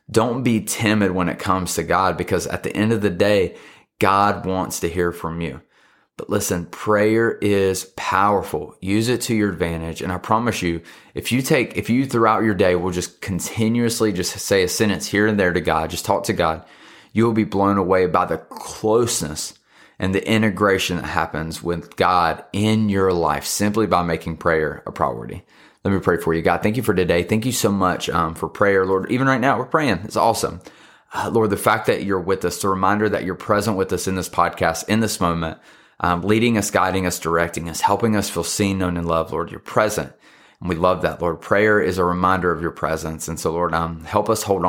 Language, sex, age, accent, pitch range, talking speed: English, male, 20-39, American, 85-110 Hz, 220 wpm